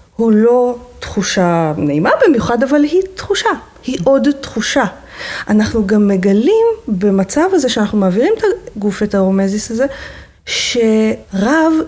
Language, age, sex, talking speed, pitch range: Hebrew, 30-49, female, 120 wpm, 205-280 Hz